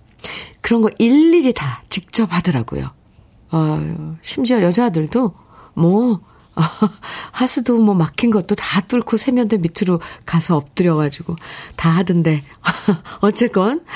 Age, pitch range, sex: 50-69, 165-225 Hz, female